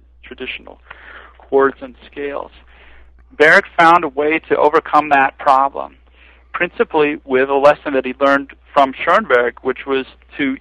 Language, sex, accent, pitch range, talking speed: English, male, American, 115-140 Hz, 135 wpm